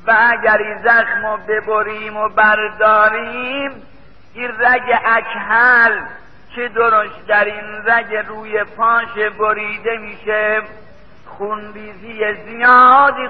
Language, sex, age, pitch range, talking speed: Persian, male, 50-69, 215-245 Hz, 85 wpm